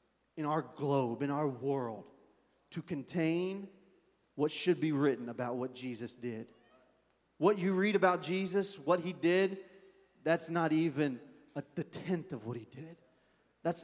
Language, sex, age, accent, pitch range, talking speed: English, male, 30-49, American, 140-185 Hz, 150 wpm